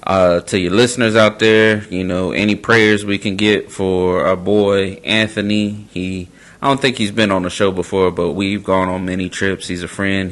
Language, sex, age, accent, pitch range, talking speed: English, male, 20-39, American, 90-105 Hz, 210 wpm